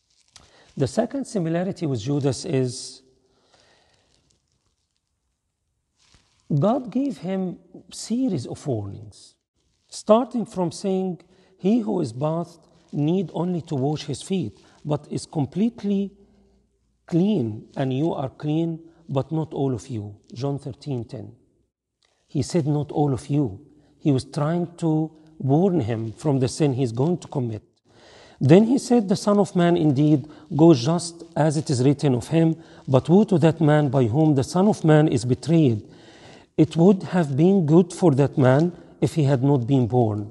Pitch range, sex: 130-175 Hz, male